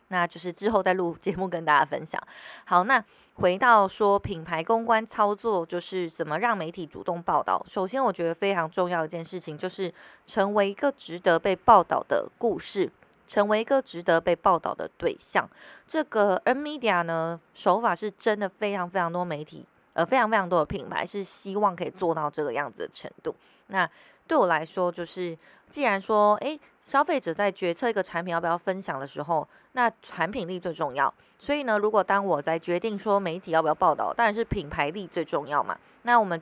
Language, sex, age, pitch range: Chinese, female, 20-39, 170-210 Hz